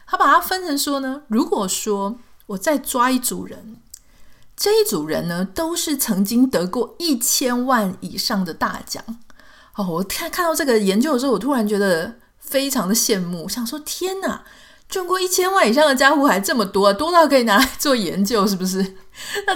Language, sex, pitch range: Chinese, female, 195-280 Hz